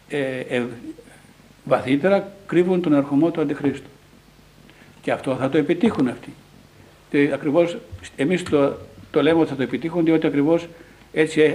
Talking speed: 140 wpm